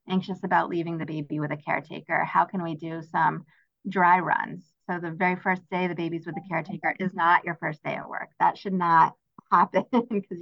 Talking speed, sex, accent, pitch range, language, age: 215 wpm, female, American, 165-195 Hz, English, 30-49